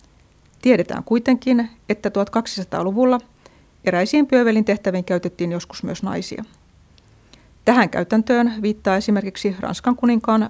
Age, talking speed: 30-49, 95 wpm